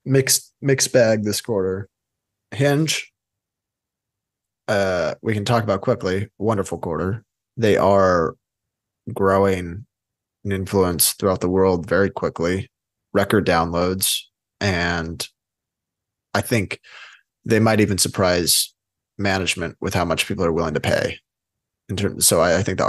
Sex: male